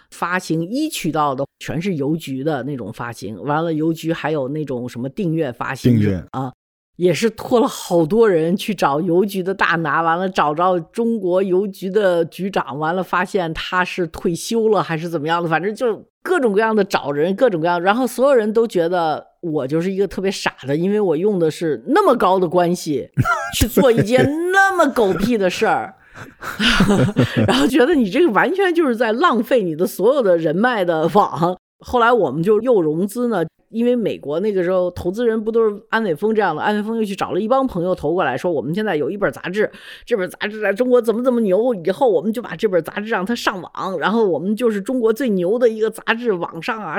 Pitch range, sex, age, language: 165-230 Hz, female, 50-69, Chinese